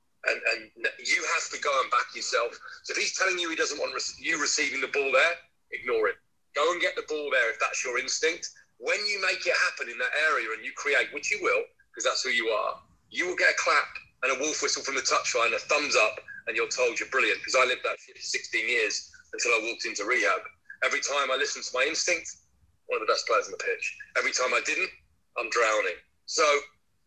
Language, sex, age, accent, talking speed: English, male, 30-49, British, 235 wpm